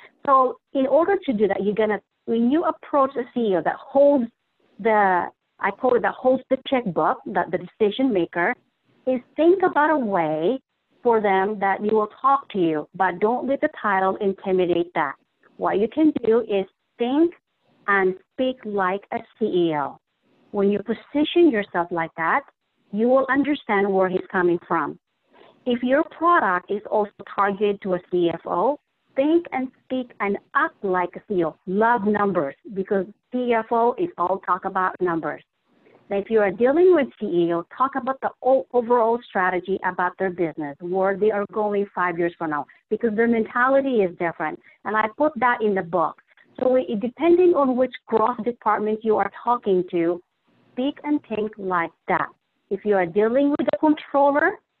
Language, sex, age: English, female, 50-69